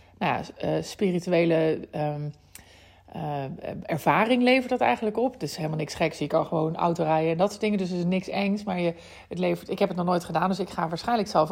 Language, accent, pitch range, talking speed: Dutch, Dutch, 155-200 Hz, 230 wpm